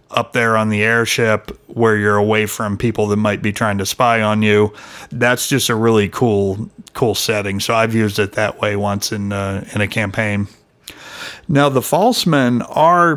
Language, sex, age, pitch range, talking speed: English, male, 40-59, 105-120 Hz, 190 wpm